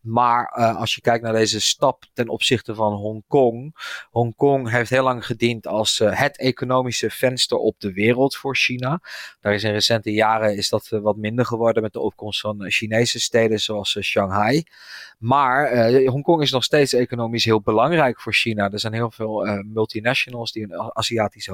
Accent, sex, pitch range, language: Dutch, male, 110-130 Hz, Dutch